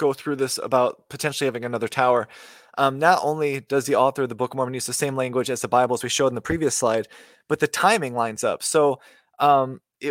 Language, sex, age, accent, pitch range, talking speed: English, male, 20-39, American, 125-150 Hz, 235 wpm